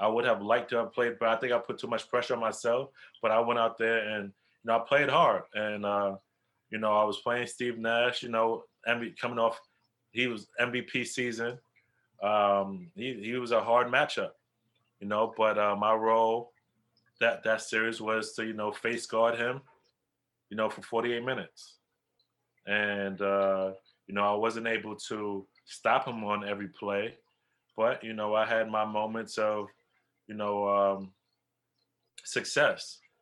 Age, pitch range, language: 20-39, 105-115 Hz, English